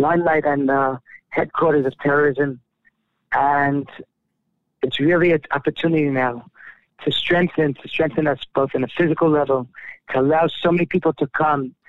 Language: English